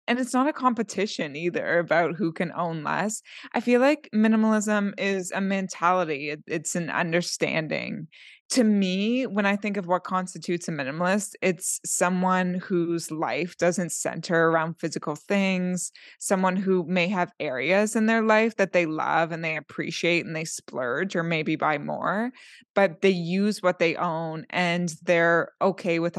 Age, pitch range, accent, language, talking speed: 20-39, 170-205 Hz, American, English, 165 wpm